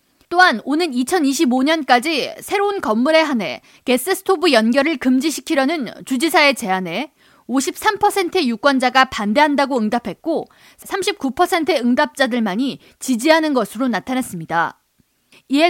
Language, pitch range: Korean, 230-320 Hz